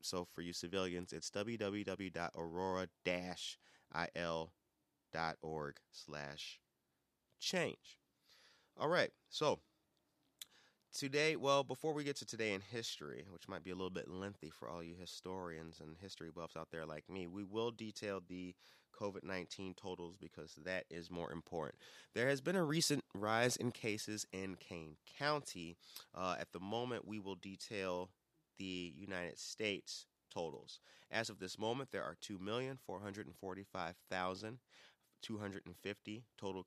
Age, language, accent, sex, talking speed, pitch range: 30-49, English, American, male, 130 wpm, 85-105 Hz